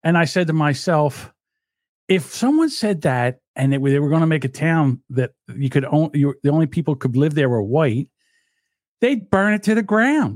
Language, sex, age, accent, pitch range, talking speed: English, male, 50-69, American, 140-205 Hz, 220 wpm